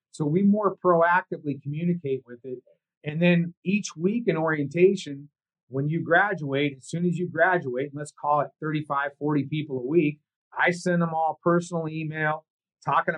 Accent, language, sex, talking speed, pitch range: American, English, male, 170 wpm, 140-170 Hz